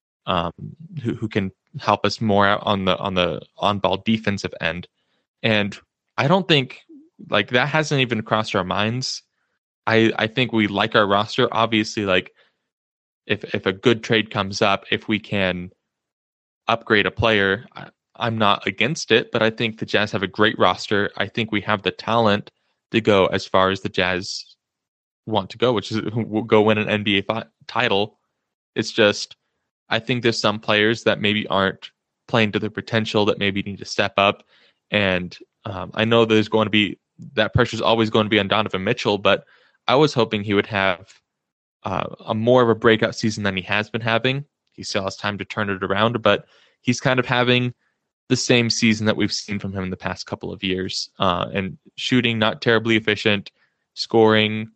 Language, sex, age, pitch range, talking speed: English, male, 10-29, 100-115 Hz, 195 wpm